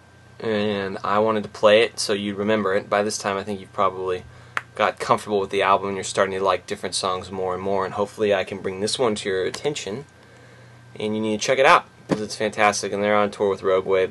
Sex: male